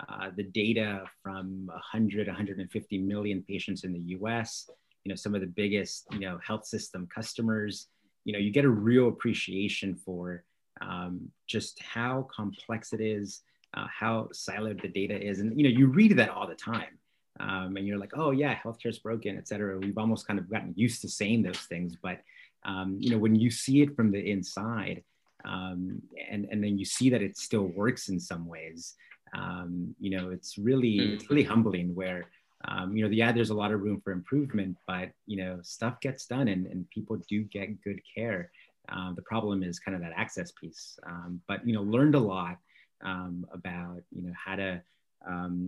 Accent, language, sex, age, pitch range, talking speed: American, English, male, 30-49, 95-110 Hz, 200 wpm